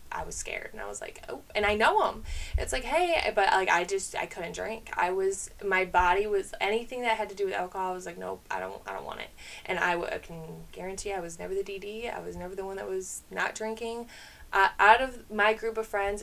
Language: English